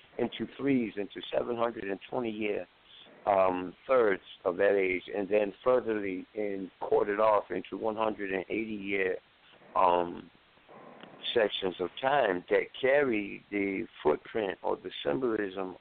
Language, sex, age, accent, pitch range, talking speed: English, male, 60-79, American, 95-110 Hz, 105 wpm